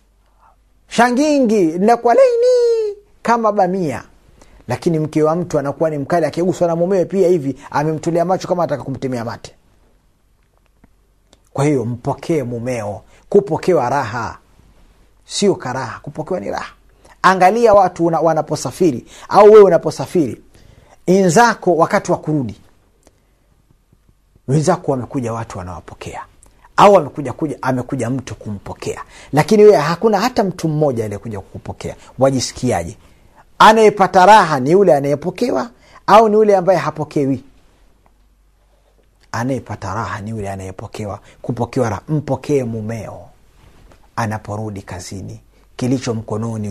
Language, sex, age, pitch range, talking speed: Swahili, male, 40-59, 105-175 Hz, 110 wpm